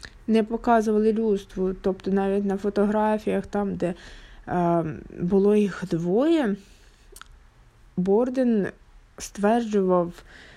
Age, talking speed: 20-39, 85 wpm